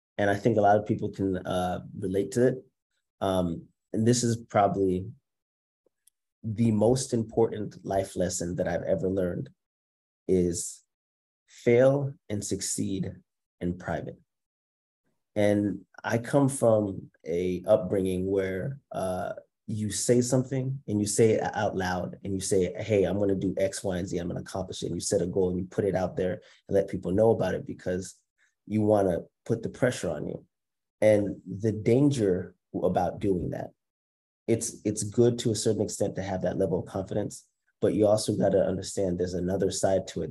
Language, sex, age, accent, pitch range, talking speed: English, male, 30-49, American, 90-110 Hz, 180 wpm